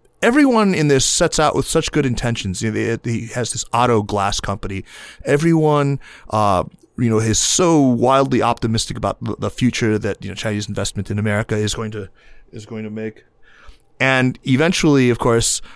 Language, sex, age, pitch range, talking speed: English, male, 30-49, 105-125 Hz, 185 wpm